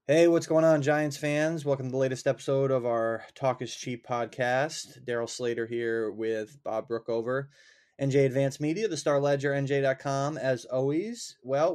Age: 20-39